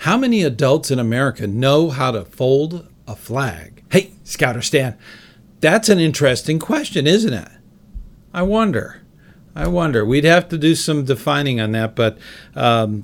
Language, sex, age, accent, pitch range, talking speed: English, male, 50-69, American, 115-155 Hz, 155 wpm